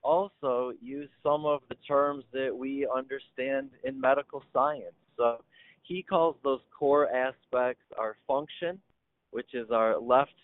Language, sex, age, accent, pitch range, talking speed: English, male, 30-49, American, 115-140 Hz, 140 wpm